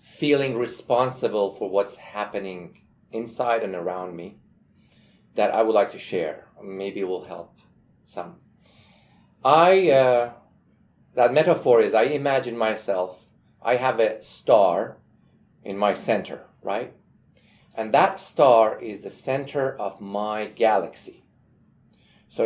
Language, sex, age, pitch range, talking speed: English, male, 40-59, 115-155 Hz, 125 wpm